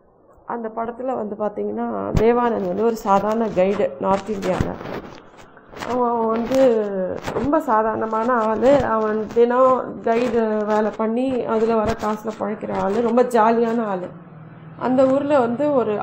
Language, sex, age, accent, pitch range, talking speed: Tamil, female, 30-49, native, 210-250 Hz, 125 wpm